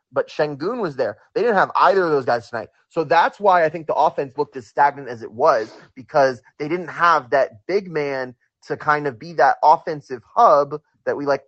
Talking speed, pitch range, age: 220 wpm, 130-175 Hz, 20-39